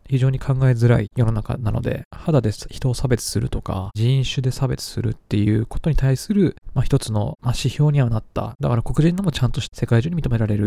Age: 20-39